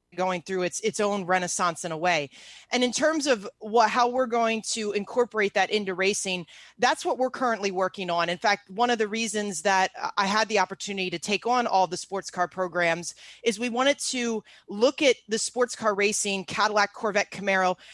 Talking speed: 200 wpm